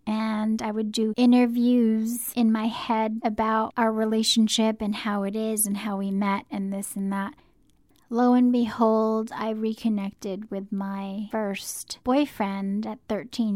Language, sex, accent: English, female, American